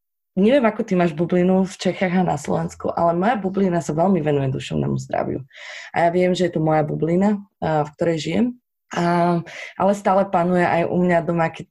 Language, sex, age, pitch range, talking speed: Slovak, female, 20-39, 150-175 Hz, 190 wpm